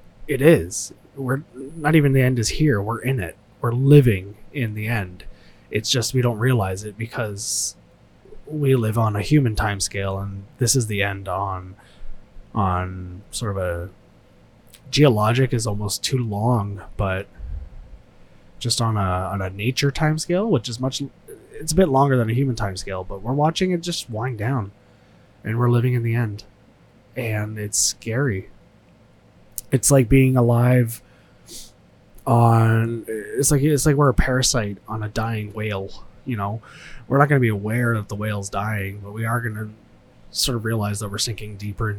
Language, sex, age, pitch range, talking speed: English, male, 20-39, 100-125 Hz, 175 wpm